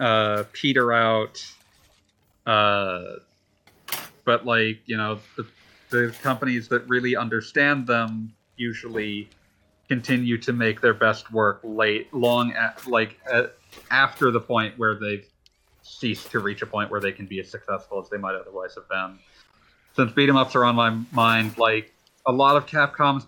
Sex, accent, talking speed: male, American, 155 wpm